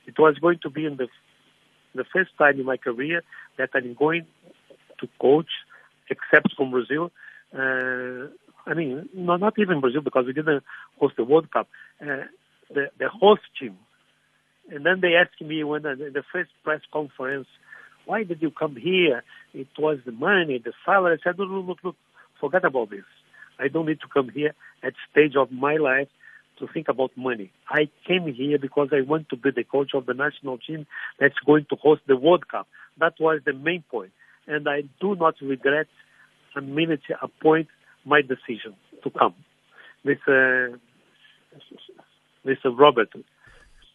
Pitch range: 135-165 Hz